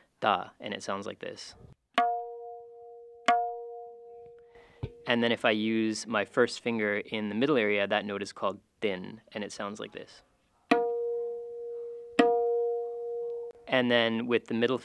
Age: 20-39